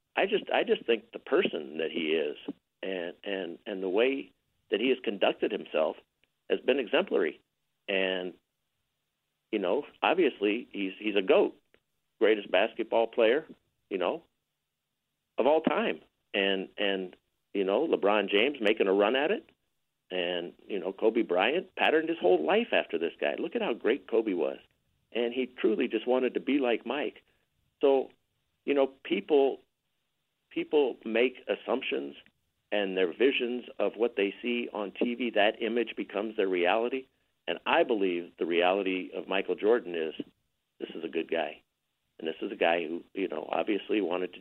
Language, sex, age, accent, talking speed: English, male, 50-69, American, 165 wpm